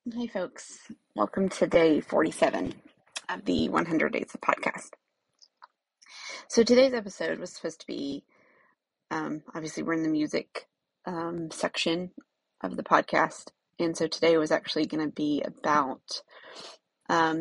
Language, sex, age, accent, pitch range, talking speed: English, female, 20-39, American, 155-180 Hz, 140 wpm